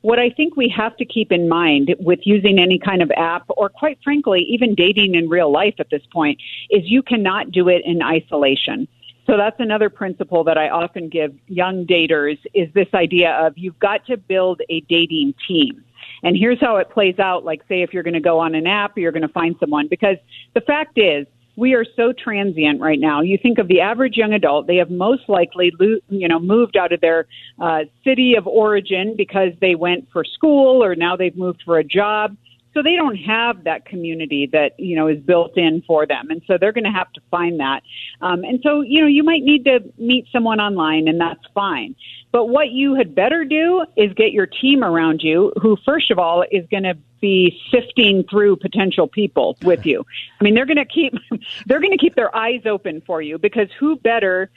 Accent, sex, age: American, female, 50-69